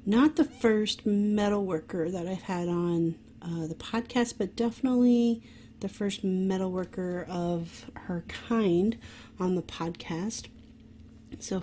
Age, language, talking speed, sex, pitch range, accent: 30-49, English, 120 wpm, female, 170-205 Hz, American